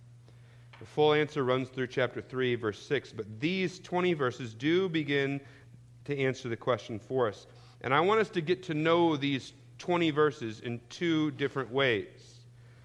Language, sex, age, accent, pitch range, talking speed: English, male, 40-59, American, 120-155 Hz, 170 wpm